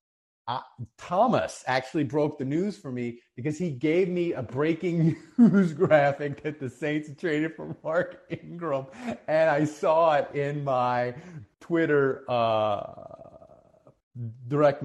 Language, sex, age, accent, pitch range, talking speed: English, male, 30-49, American, 120-175 Hz, 130 wpm